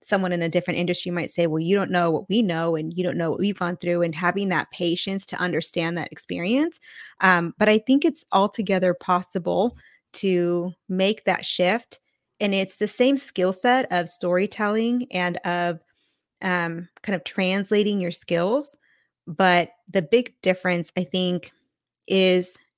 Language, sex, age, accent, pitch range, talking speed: English, female, 20-39, American, 175-210 Hz, 170 wpm